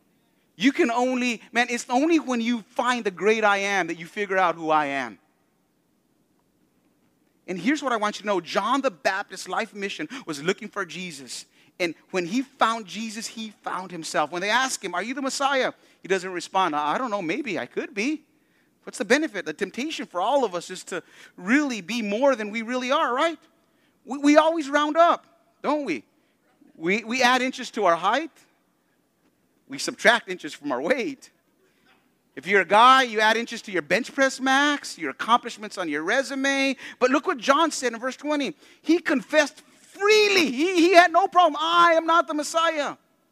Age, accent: 30-49, American